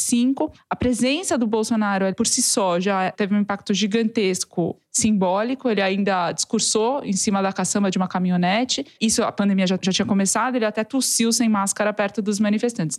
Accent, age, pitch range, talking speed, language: Brazilian, 20-39, 190-225 Hz, 175 wpm, Portuguese